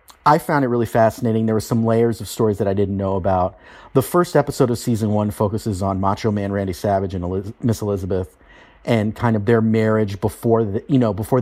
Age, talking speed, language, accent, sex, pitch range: 40-59, 220 wpm, English, American, male, 100-120 Hz